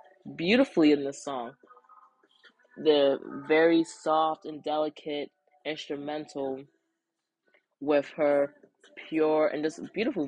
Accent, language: American, English